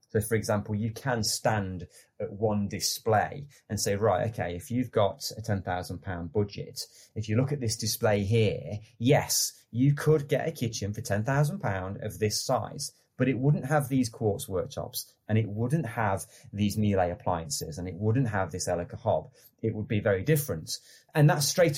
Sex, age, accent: male, 30-49, British